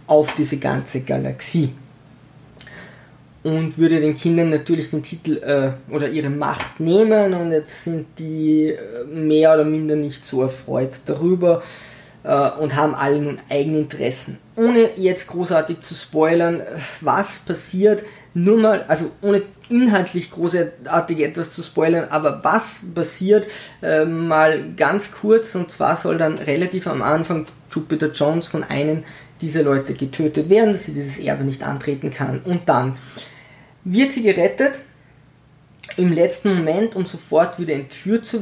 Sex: male